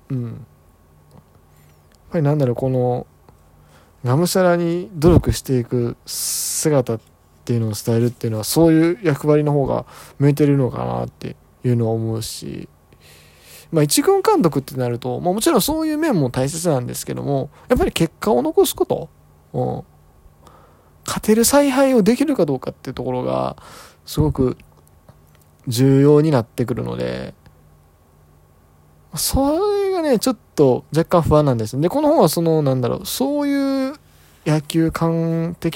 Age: 20-39